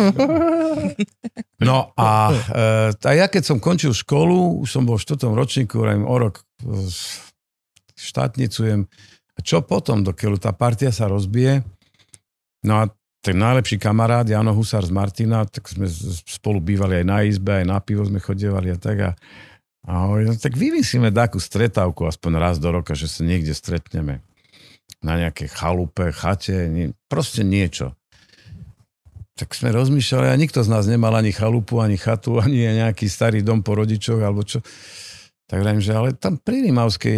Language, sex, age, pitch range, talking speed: Slovak, male, 50-69, 95-120 Hz, 150 wpm